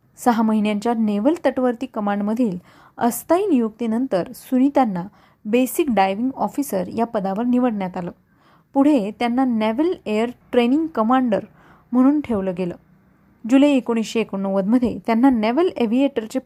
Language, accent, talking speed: Marathi, native, 110 wpm